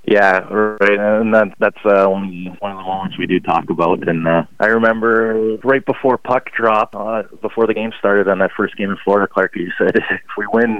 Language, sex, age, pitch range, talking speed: English, male, 20-39, 95-110 Hz, 215 wpm